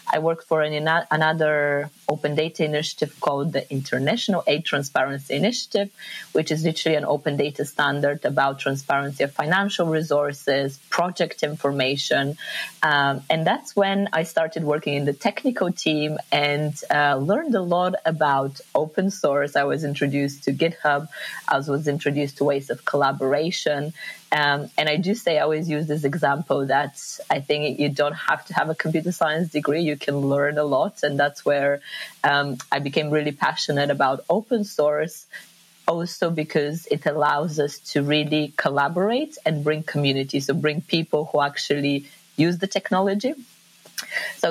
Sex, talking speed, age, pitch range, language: female, 160 wpm, 30-49, 145-170 Hz, English